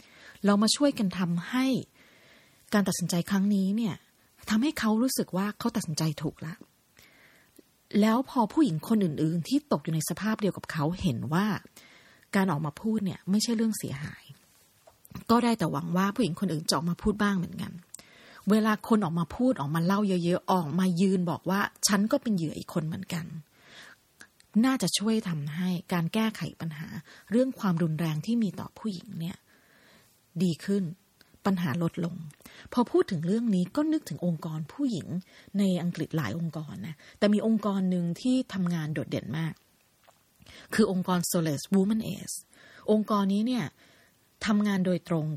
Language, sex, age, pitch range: Thai, female, 30-49, 165-215 Hz